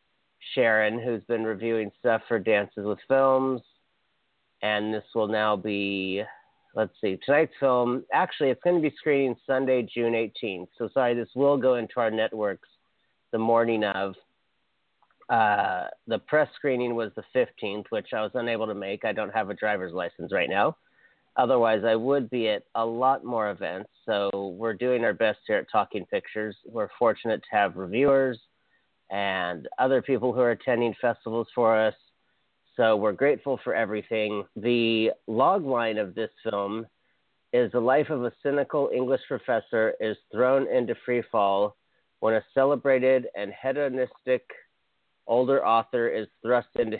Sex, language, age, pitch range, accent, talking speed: male, English, 40-59, 110-135 Hz, American, 160 wpm